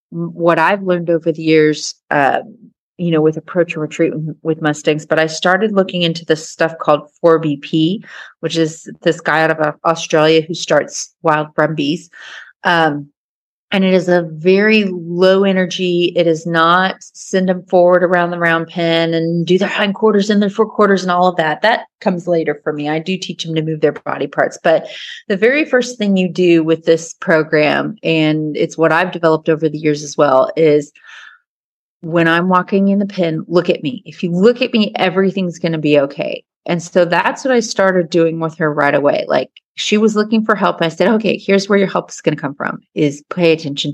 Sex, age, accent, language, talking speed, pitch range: female, 30-49, American, English, 205 wpm, 155-185 Hz